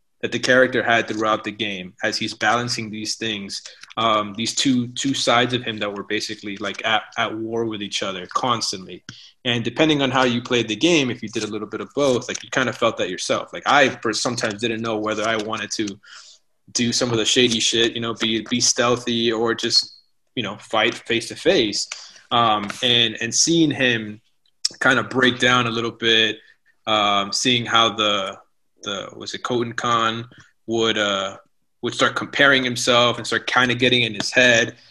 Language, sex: English, male